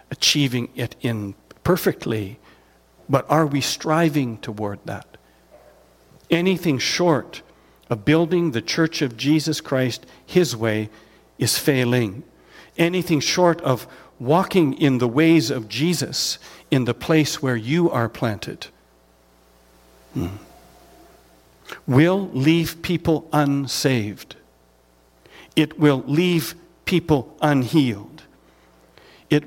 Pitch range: 110-160 Hz